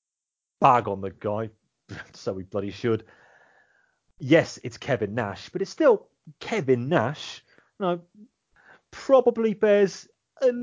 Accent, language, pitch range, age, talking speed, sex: British, English, 110-155 Hz, 30-49, 125 wpm, male